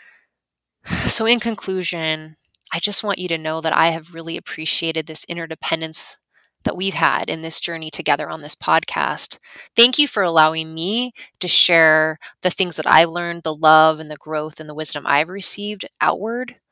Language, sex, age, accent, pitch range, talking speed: English, female, 20-39, American, 160-200 Hz, 175 wpm